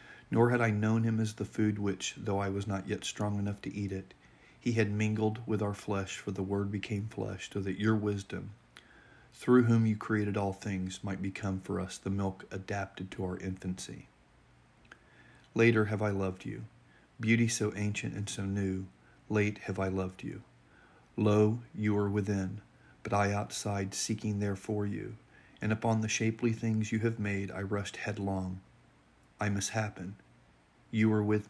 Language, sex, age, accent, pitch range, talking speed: English, male, 40-59, American, 100-110 Hz, 180 wpm